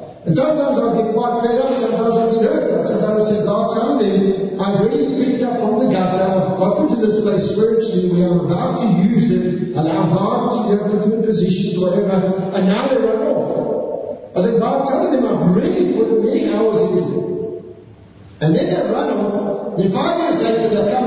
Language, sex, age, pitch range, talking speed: English, male, 50-69, 190-225 Hz, 220 wpm